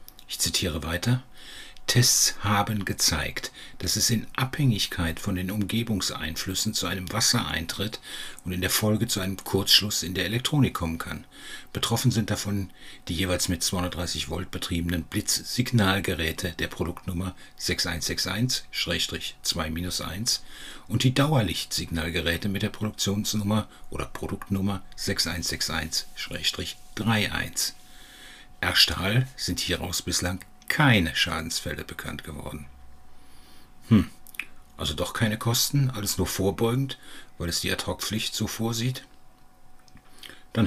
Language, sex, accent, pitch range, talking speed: German, male, German, 85-110 Hz, 110 wpm